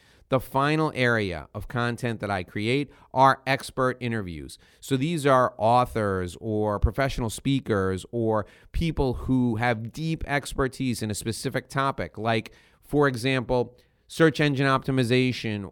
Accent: American